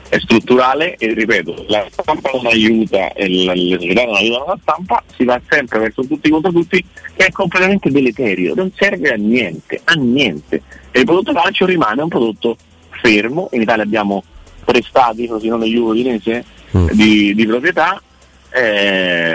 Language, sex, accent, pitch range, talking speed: Italian, male, native, 100-130 Hz, 160 wpm